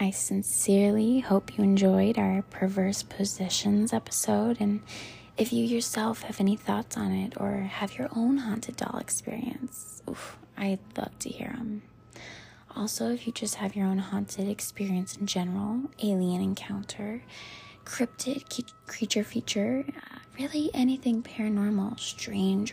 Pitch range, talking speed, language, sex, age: 195-235 Hz, 135 wpm, English, female, 20-39